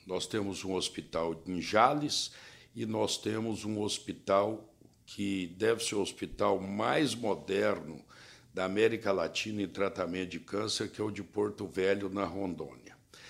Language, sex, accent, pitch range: Portuguese, male, Brazilian, 95-120 Hz